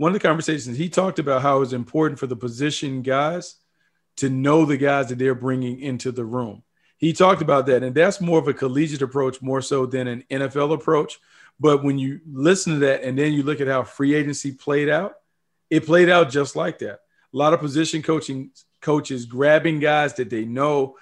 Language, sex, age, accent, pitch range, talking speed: English, male, 40-59, American, 130-150 Hz, 210 wpm